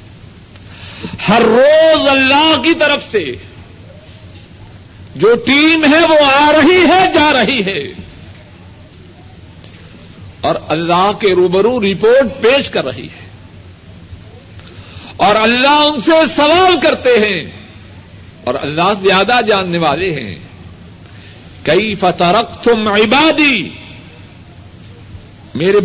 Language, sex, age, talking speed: Urdu, male, 60-79, 95 wpm